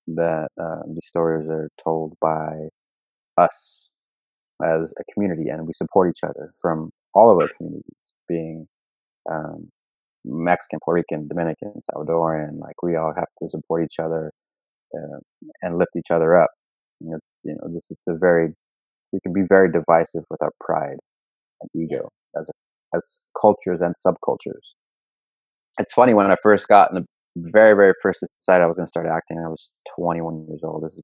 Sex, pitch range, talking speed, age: male, 80-95 Hz, 170 wpm, 30-49